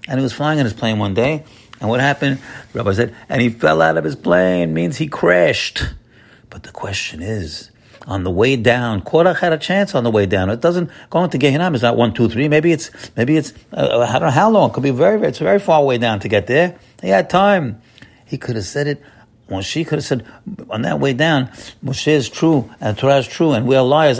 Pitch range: 105-145 Hz